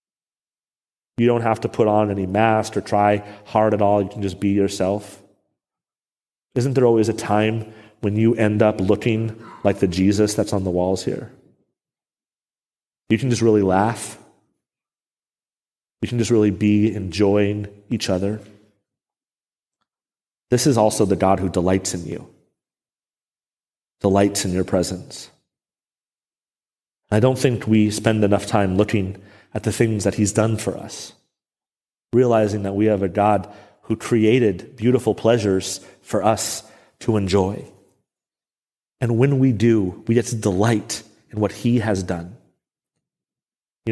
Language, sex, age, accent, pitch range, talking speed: English, male, 30-49, American, 100-110 Hz, 145 wpm